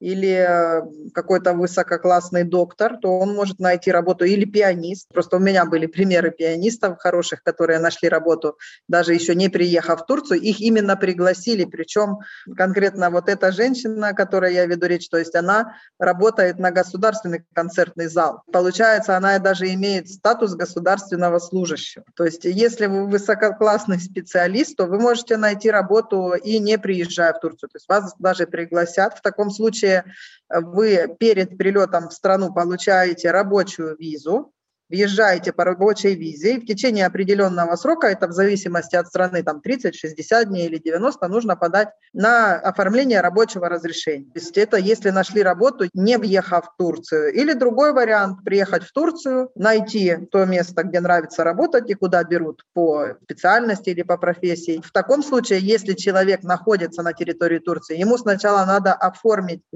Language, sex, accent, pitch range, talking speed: Russian, female, native, 175-210 Hz, 155 wpm